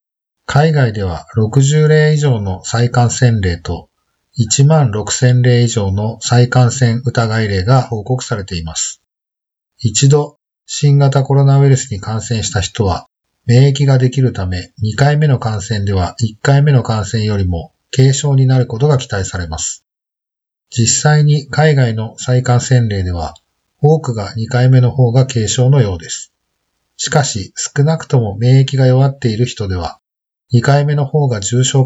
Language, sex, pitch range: Japanese, male, 105-135 Hz